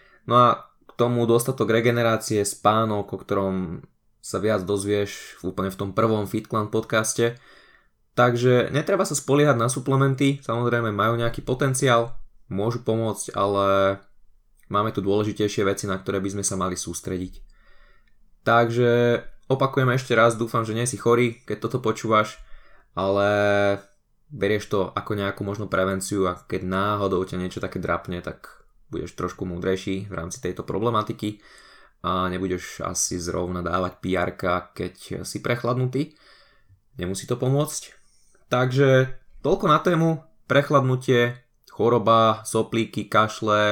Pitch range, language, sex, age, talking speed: 95-120 Hz, Slovak, male, 20-39, 130 wpm